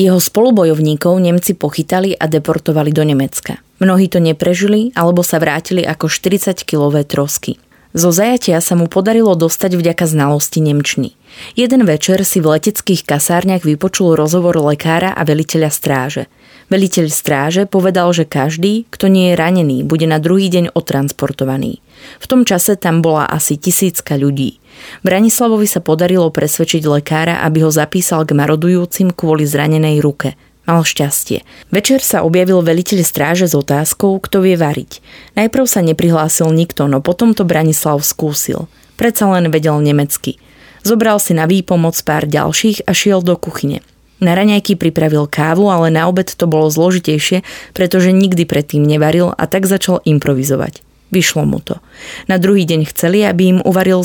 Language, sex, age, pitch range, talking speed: Slovak, female, 20-39, 155-185 Hz, 150 wpm